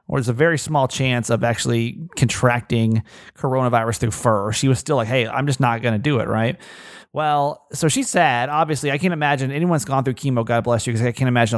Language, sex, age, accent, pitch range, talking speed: English, male, 30-49, American, 115-150 Hz, 230 wpm